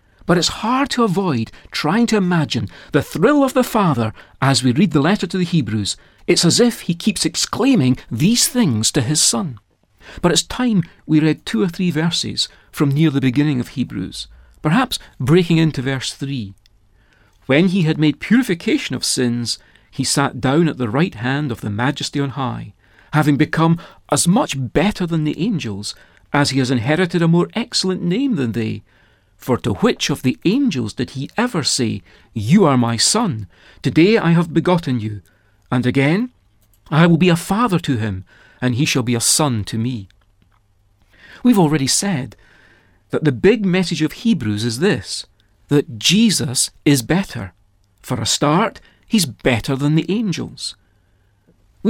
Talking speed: 170 wpm